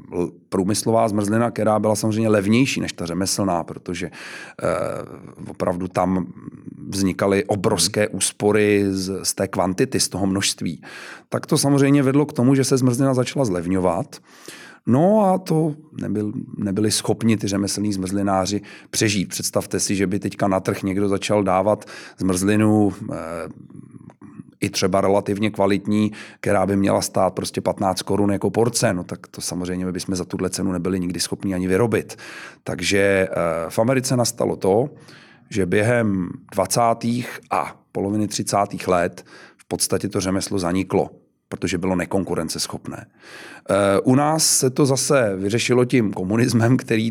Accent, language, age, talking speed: native, Czech, 30-49, 140 wpm